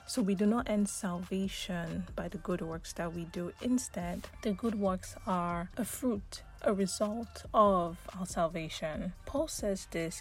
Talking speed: 165 wpm